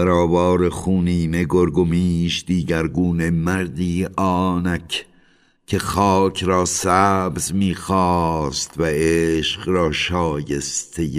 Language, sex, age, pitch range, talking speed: Persian, male, 60-79, 75-95 Hz, 80 wpm